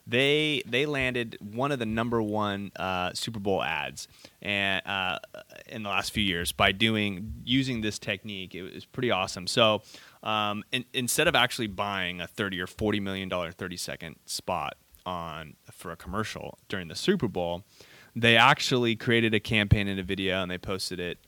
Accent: American